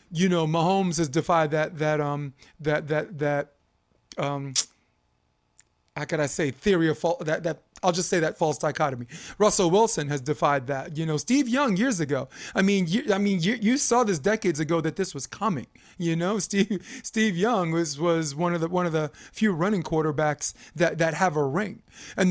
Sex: male